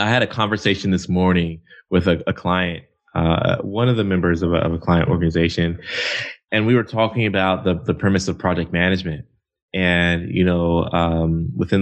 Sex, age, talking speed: male, 20-39, 185 wpm